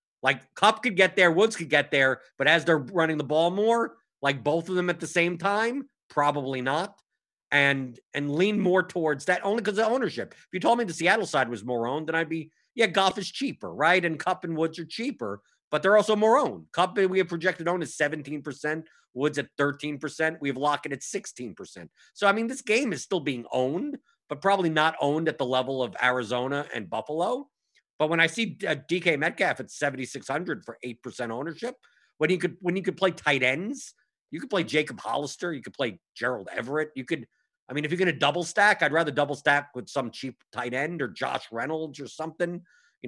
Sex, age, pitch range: male, 50-69, 140-190 Hz